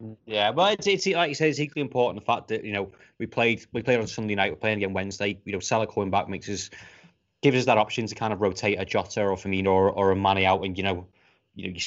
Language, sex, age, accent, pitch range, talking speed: English, male, 20-39, British, 100-115 Hz, 285 wpm